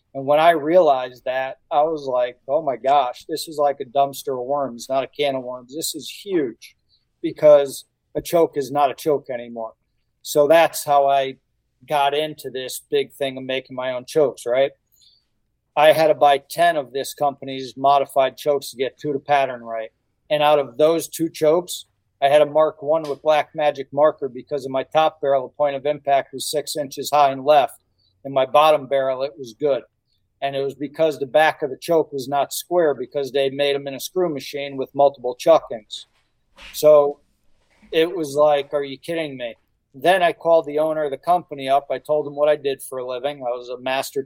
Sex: male